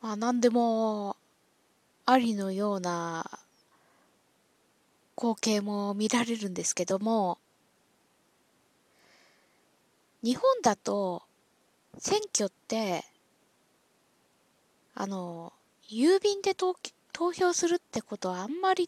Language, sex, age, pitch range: Japanese, female, 20-39, 205-305 Hz